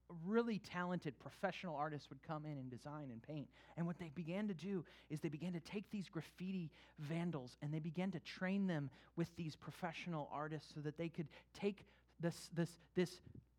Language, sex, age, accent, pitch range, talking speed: English, male, 30-49, American, 130-170 Hz, 190 wpm